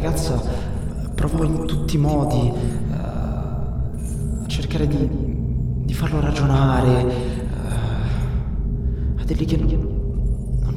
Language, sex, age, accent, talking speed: Italian, male, 20-39, native, 95 wpm